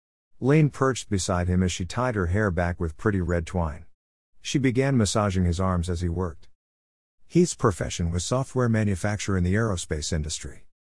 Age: 50-69